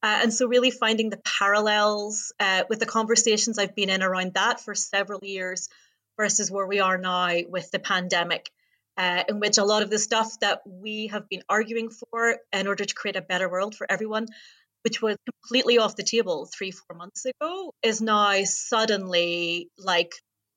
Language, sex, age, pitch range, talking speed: English, female, 30-49, 185-230 Hz, 185 wpm